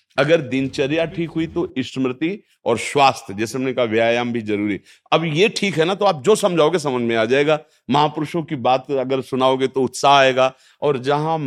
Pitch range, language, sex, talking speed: 115-155 Hz, Hindi, male, 195 wpm